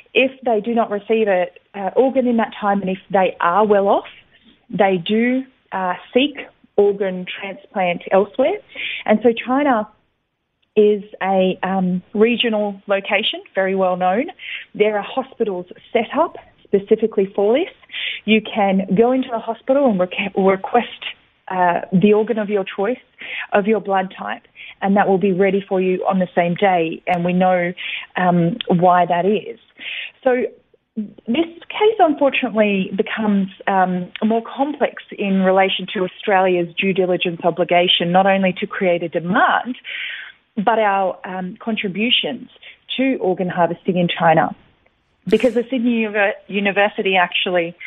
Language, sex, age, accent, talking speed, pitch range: English, female, 30-49, Australian, 145 wpm, 185-235 Hz